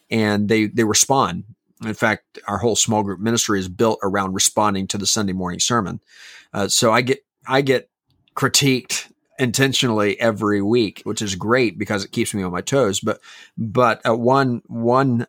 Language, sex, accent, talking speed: English, male, American, 175 wpm